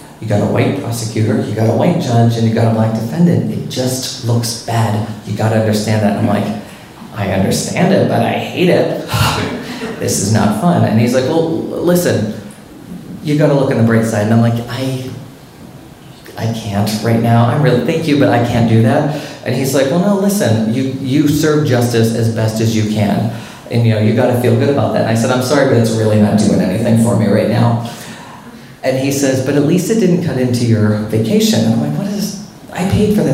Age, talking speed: 30-49, 235 wpm